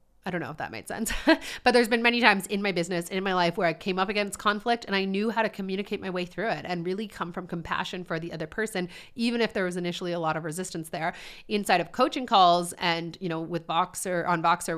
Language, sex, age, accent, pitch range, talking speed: English, female, 30-49, American, 170-205 Hz, 260 wpm